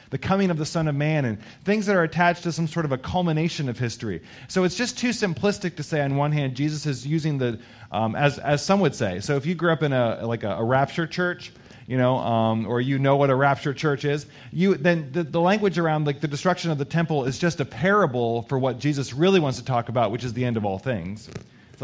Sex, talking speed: male, 260 wpm